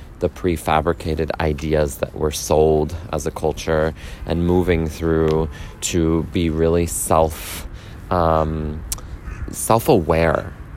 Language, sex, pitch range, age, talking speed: English, male, 80-100 Hz, 30-49, 105 wpm